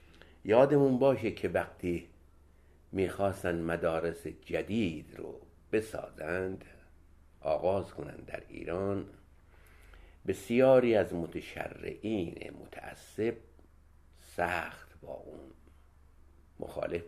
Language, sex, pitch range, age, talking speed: Persian, male, 70-105 Hz, 60-79, 75 wpm